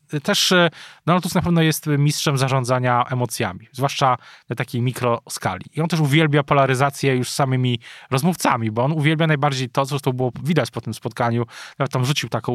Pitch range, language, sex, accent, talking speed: 125-155 Hz, Polish, male, native, 180 wpm